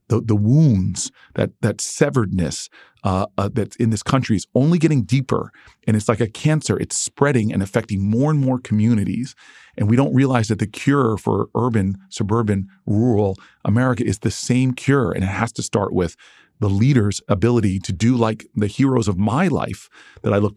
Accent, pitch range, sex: American, 100-120 Hz, male